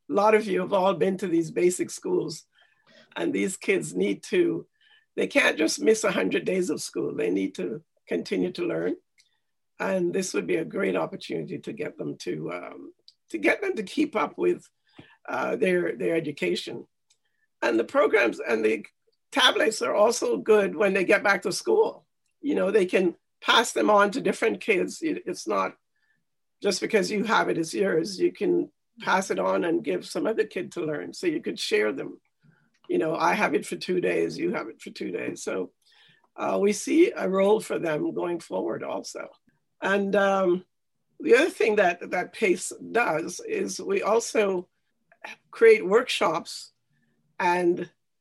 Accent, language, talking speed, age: American, English, 180 wpm, 50-69